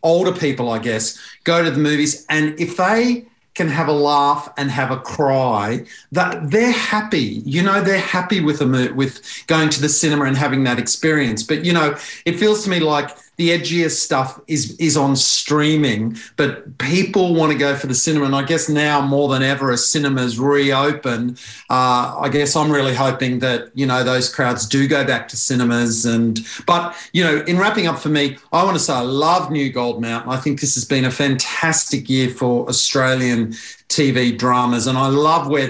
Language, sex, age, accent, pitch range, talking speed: English, male, 40-59, Australian, 130-160 Hz, 205 wpm